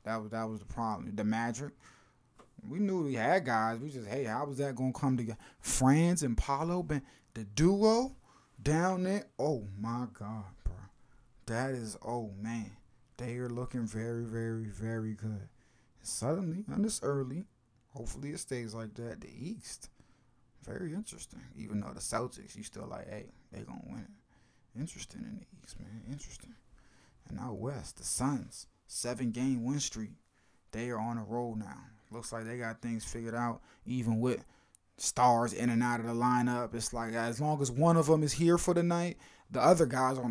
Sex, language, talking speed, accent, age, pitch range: male, English, 190 wpm, American, 20-39, 110-135 Hz